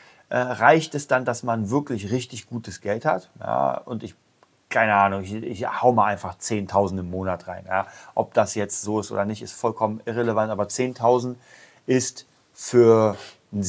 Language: German